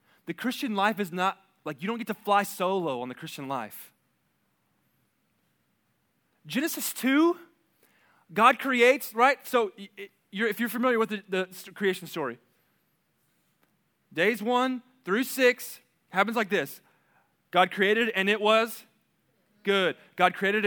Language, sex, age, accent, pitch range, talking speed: English, male, 20-39, American, 150-230 Hz, 130 wpm